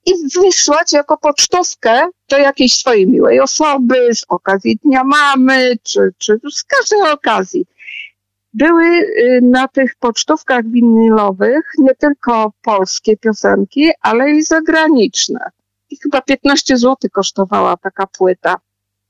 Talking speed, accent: 115 wpm, native